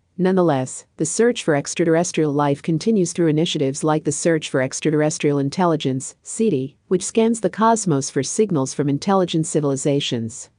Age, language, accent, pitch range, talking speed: 50-69, English, American, 145-180 Hz, 140 wpm